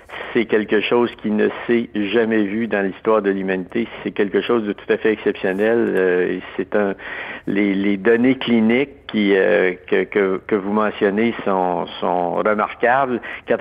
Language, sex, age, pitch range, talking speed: French, male, 50-69, 100-115 Hz, 165 wpm